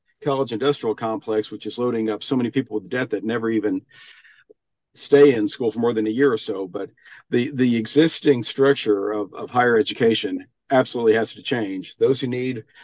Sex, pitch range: male, 115-145 Hz